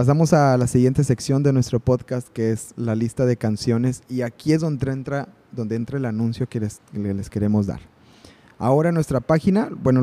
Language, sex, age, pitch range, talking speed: Spanish, male, 30-49, 115-145 Hz, 205 wpm